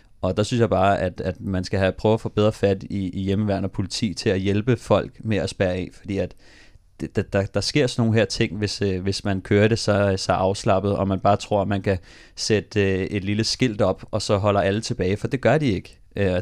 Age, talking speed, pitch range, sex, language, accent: 30-49, 265 wpm, 95-110 Hz, male, Danish, native